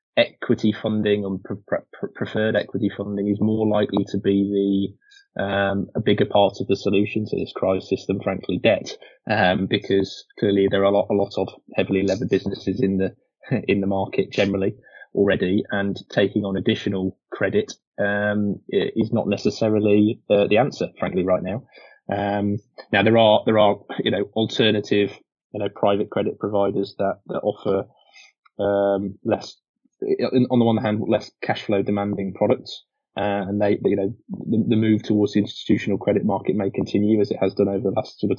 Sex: male